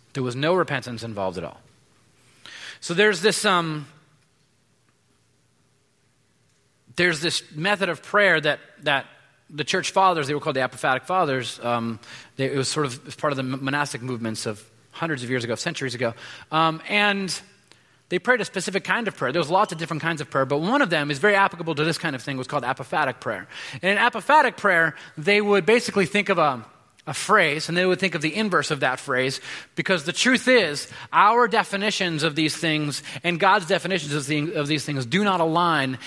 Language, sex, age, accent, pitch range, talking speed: English, male, 30-49, American, 135-185 Hz, 200 wpm